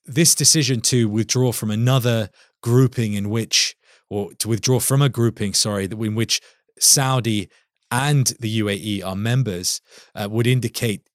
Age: 20-39